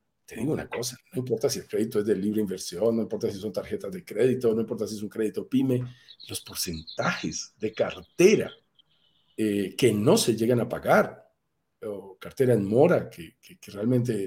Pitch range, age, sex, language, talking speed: 125-195 Hz, 50-69, male, Spanish, 195 wpm